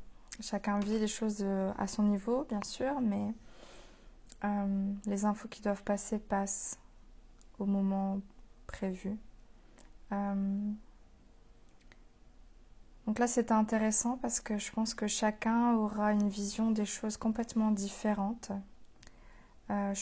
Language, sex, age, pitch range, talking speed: French, female, 20-39, 195-220 Hz, 120 wpm